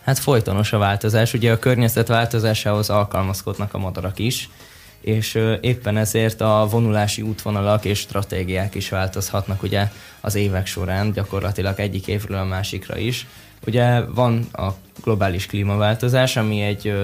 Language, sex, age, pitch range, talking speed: Hungarian, male, 10-29, 100-115 Hz, 135 wpm